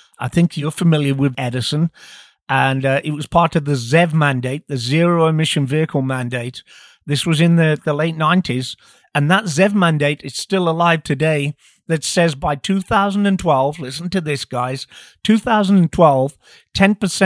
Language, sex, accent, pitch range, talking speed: English, male, British, 135-165 Hz, 155 wpm